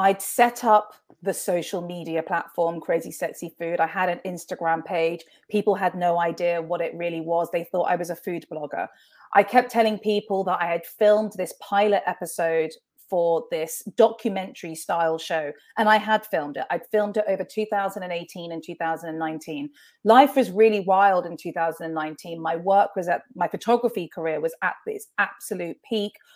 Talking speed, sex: 175 wpm, female